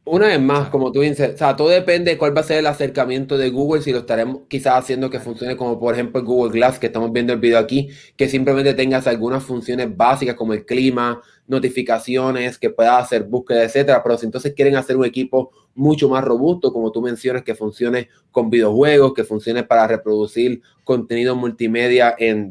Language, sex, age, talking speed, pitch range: Spanish, male, 20-39, 200 wpm, 120-140 Hz